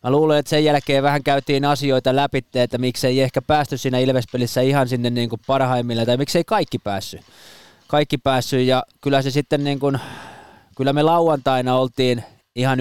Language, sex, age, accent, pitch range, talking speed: Finnish, male, 20-39, native, 115-140 Hz, 180 wpm